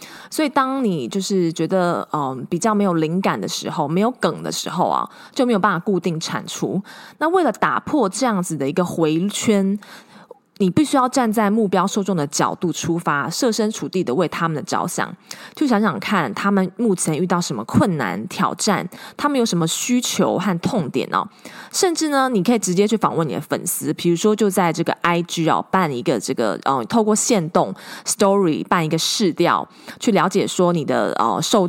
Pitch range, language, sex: 170-220 Hz, Chinese, female